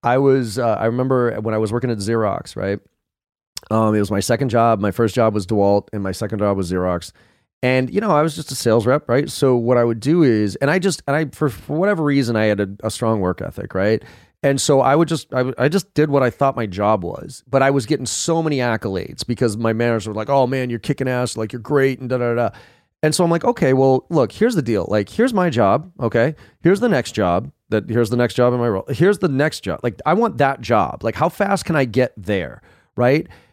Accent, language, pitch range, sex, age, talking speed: American, English, 110-140 Hz, male, 30-49, 260 wpm